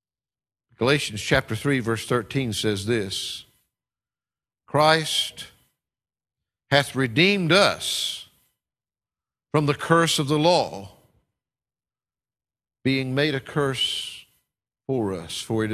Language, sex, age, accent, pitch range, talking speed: English, male, 50-69, American, 115-170 Hz, 95 wpm